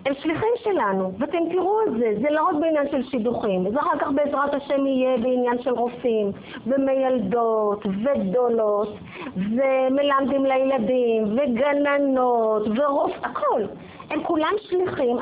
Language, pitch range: English, 235-310 Hz